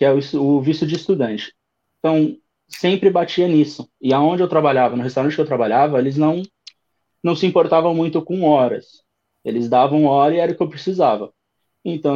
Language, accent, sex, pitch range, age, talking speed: Portuguese, Brazilian, male, 145-195 Hz, 20-39, 190 wpm